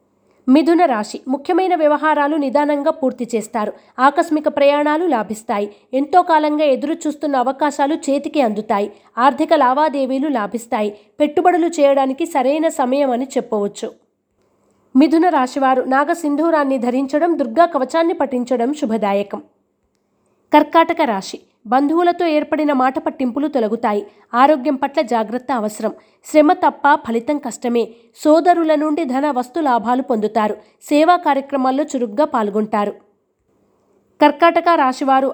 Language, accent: Telugu, native